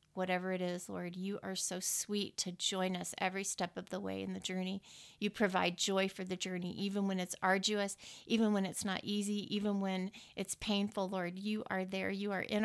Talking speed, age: 215 wpm, 40-59